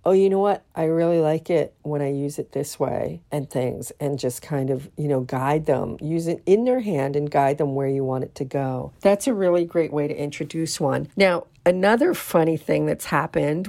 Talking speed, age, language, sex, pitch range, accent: 230 wpm, 50-69, English, female, 140-180 Hz, American